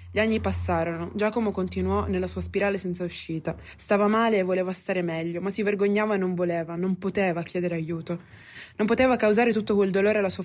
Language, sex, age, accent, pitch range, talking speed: Italian, female, 20-39, native, 175-210 Hz, 195 wpm